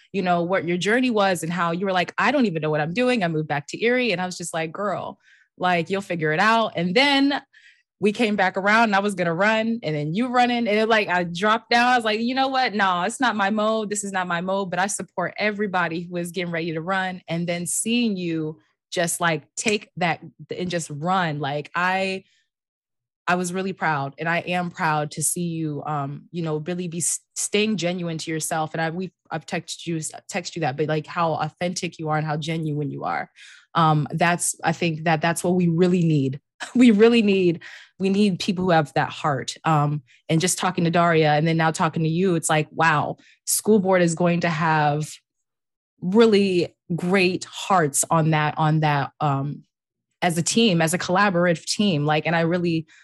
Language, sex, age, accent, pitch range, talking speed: English, female, 20-39, American, 160-195 Hz, 220 wpm